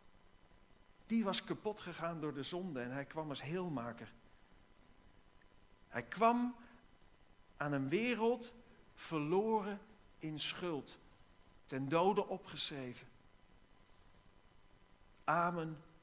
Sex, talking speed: male, 90 wpm